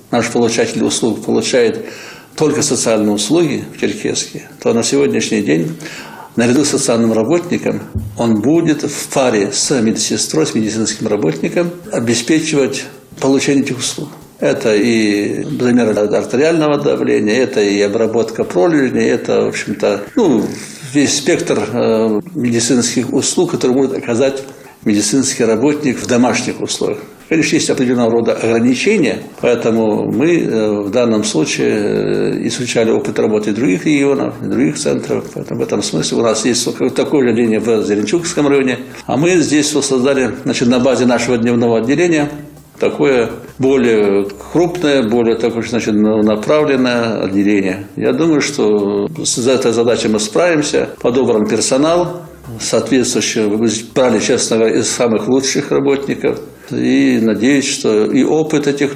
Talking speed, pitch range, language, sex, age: 125 wpm, 110-140 Hz, Russian, male, 60-79